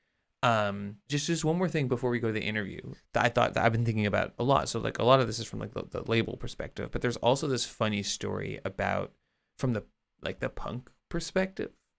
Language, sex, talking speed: English, male, 240 wpm